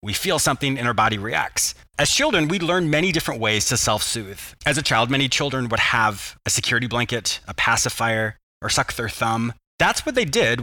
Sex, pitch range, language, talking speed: male, 115-145 Hz, English, 205 wpm